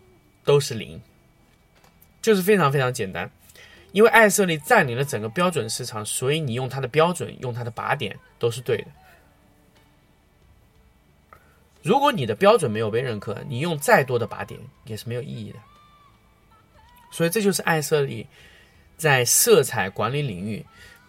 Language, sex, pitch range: Chinese, male, 115-170 Hz